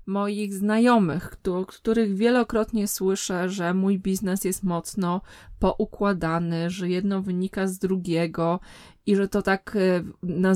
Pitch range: 185-225 Hz